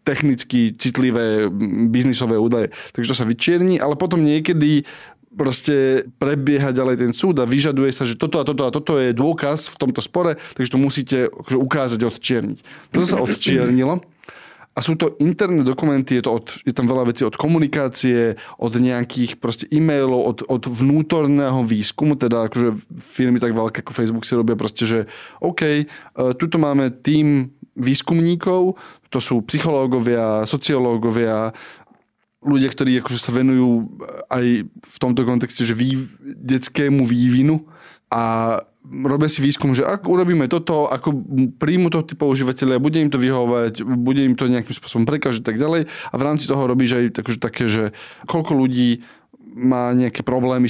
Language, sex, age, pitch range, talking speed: Slovak, male, 20-39, 120-150 Hz, 155 wpm